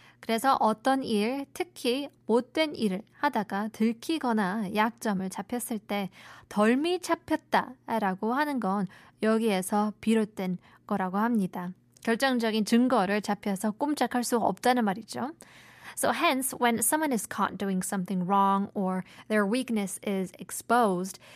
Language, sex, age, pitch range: Korean, female, 20-39, 200-250 Hz